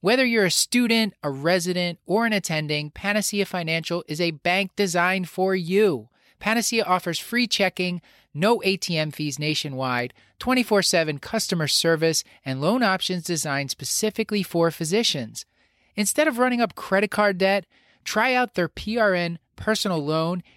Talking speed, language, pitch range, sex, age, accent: 140 wpm, English, 160-200 Hz, male, 30-49, American